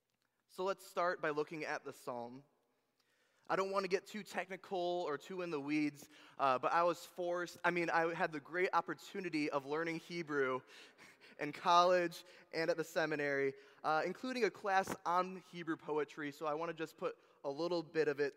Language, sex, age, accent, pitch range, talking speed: English, male, 20-39, American, 150-185 Hz, 195 wpm